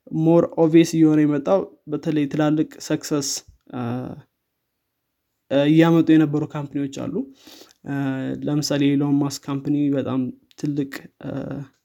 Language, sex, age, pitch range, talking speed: Amharic, male, 20-39, 140-155 Hz, 90 wpm